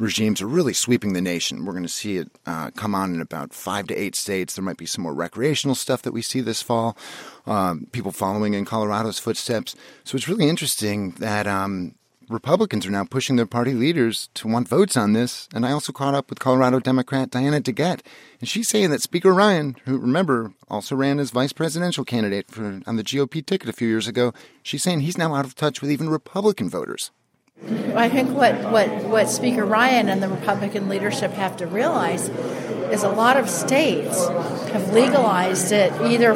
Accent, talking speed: American, 200 wpm